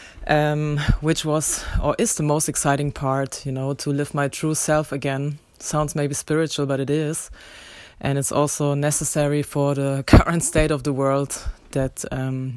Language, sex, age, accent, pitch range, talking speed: English, female, 20-39, German, 145-160 Hz, 170 wpm